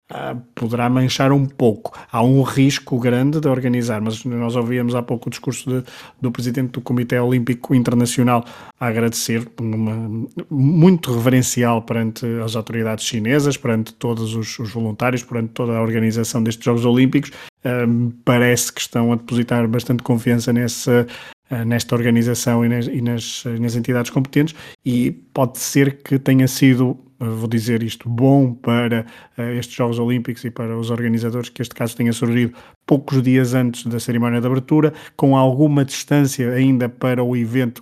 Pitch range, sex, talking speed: 120-130 Hz, male, 150 wpm